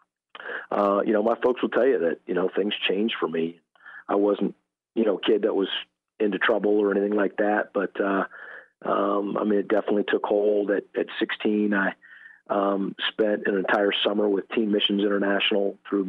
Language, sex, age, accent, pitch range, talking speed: English, male, 40-59, American, 100-105 Hz, 195 wpm